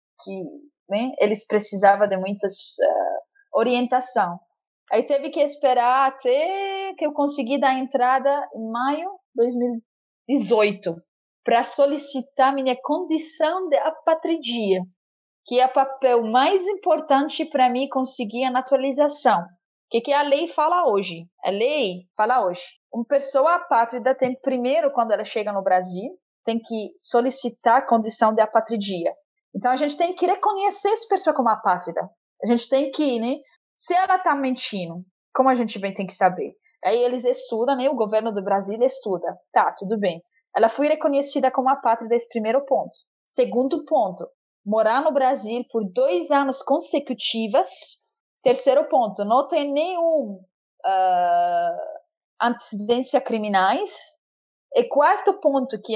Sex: female